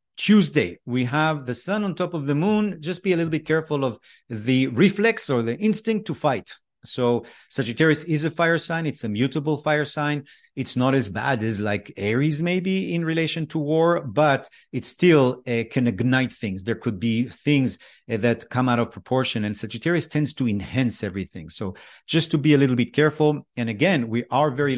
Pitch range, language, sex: 115-150 Hz, English, male